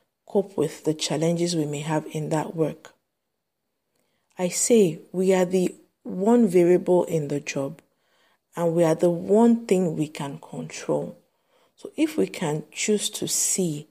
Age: 50-69